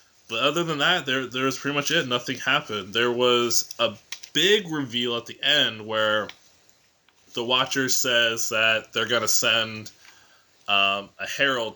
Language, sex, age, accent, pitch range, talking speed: English, male, 20-39, American, 110-130 Hz, 165 wpm